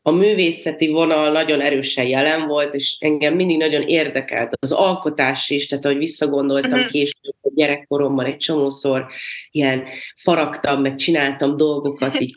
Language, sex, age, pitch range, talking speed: Hungarian, female, 30-49, 140-170 Hz, 140 wpm